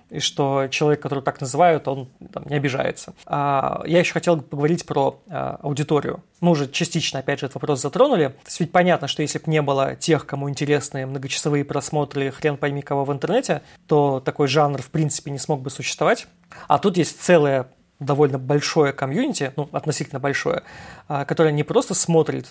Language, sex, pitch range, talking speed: Russian, male, 140-165 Hz, 185 wpm